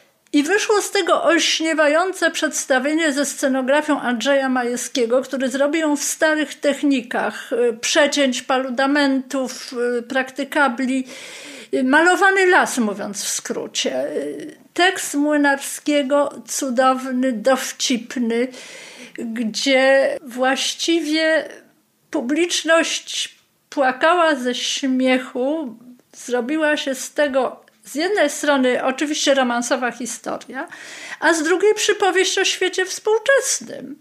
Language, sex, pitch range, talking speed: Polish, female, 250-310 Hz, 90 wpm